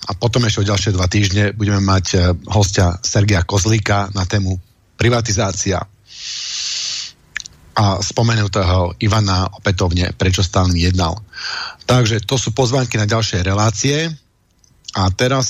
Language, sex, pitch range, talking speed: Slovak, male, 100-120 Hz, 120 wpm